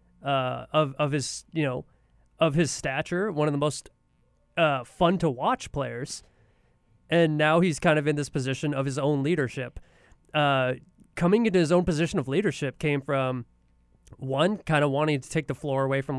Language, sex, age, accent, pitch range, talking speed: English, male, 20-39, American, 135-160 Hz, 185 wpm